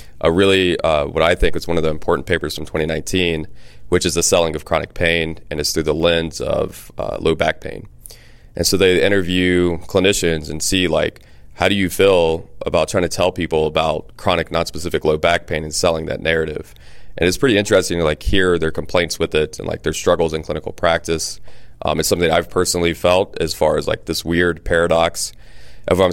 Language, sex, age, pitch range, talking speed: English, male, 30-49, 80-90 Hz, 205 wpm